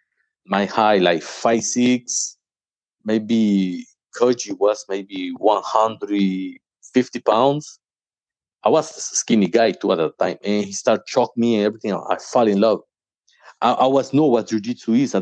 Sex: male